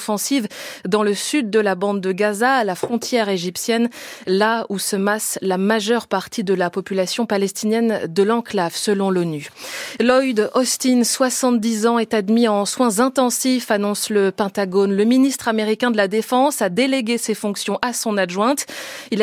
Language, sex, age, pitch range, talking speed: French, female, 20-39, 195-240 Hz, 170 wpm